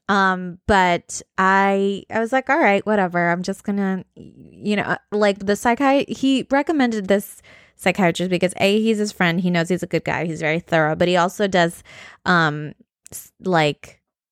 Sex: female